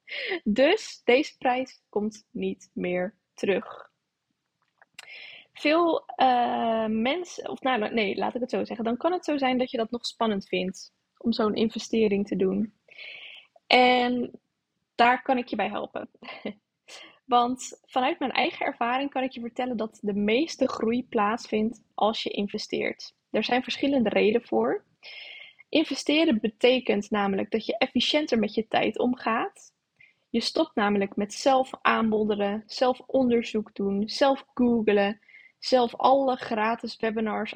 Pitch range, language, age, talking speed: 215-260 Hz, Dutch, 10-29, 140 wpm